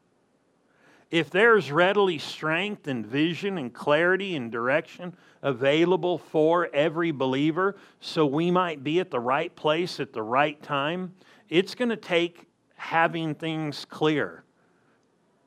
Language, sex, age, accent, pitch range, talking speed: English, male, 50-69, American, 135-180 Hz, 130 wpm